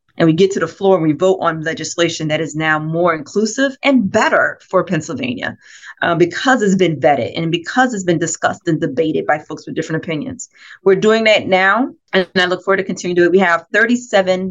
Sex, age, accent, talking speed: female, 30-49, American, 220 wpm